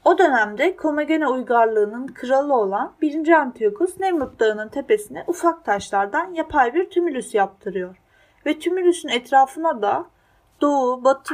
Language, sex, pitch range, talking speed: Turkish, female, 220-320 Hz, 120 wpm